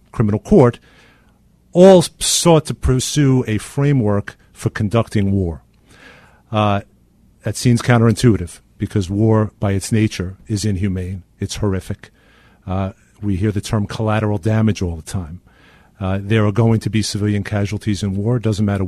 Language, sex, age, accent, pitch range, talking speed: English, male, 50-69, American, 100-120 Hz, 150 wpm